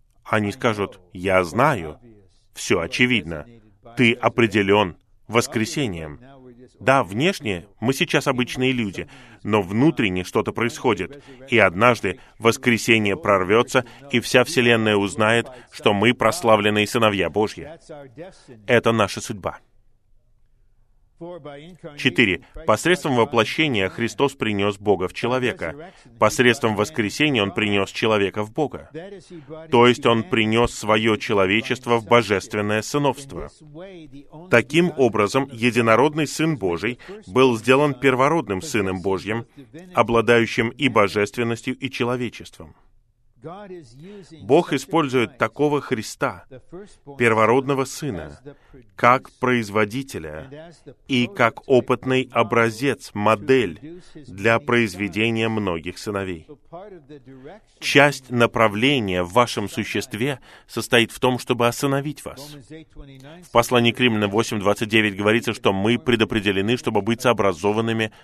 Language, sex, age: Russian, male, 20-39